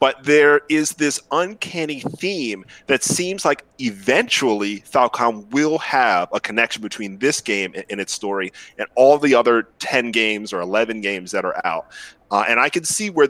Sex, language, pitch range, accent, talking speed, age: male, English, 110-150 Hz, American, 175 wpm, 30-49